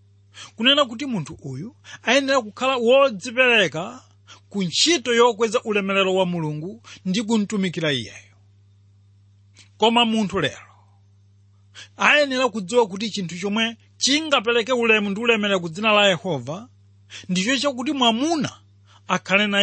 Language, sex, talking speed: English, male, 110 wpm